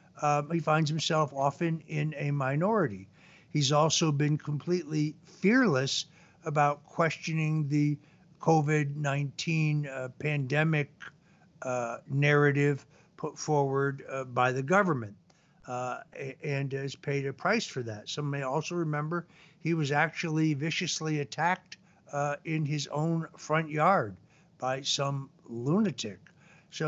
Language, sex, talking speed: English, male, 120 wpm